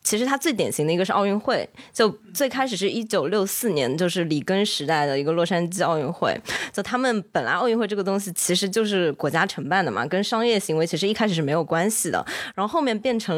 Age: 20-39